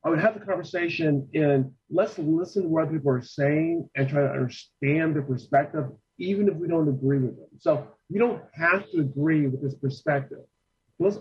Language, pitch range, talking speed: English, 135-175 Hz, 195 wpm